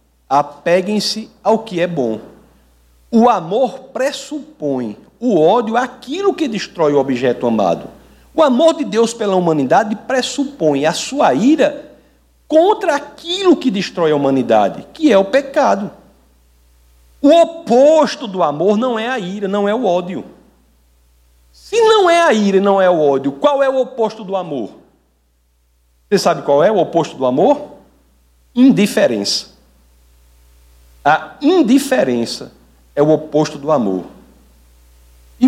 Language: Portuguese